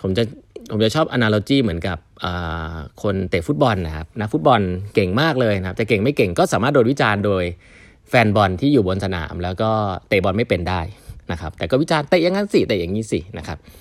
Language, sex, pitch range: Thai, male, 90-115 Hz